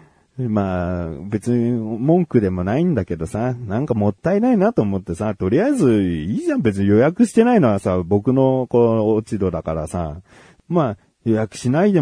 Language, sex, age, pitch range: Japanese, male, 40-59, 95-145 Hz